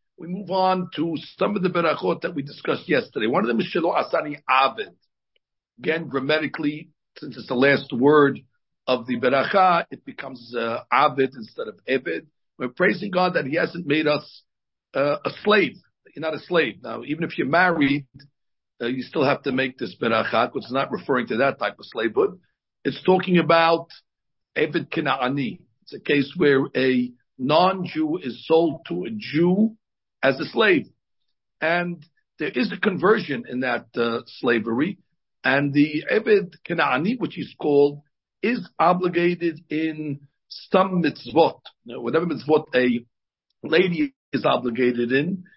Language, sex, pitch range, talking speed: Spanish, male, 135-175 Hz, 160 wpm